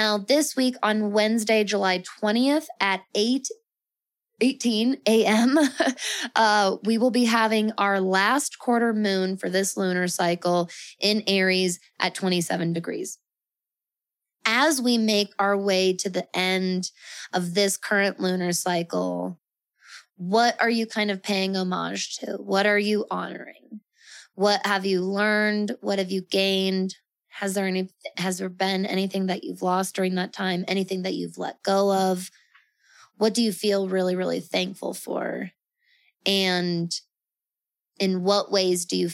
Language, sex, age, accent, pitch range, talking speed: English, female, 20-39, American, 185-225 Hz, 145 wpm